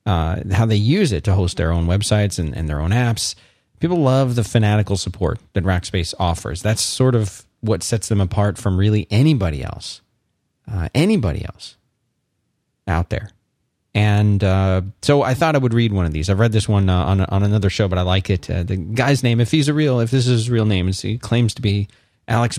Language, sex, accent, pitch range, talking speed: English, male, American, 95-125 Hz, 220 wpm